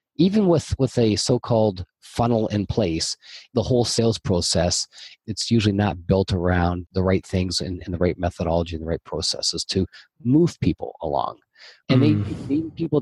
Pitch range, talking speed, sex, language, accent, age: 95-125 Hz, 170 wpm, male, English, American, 40-59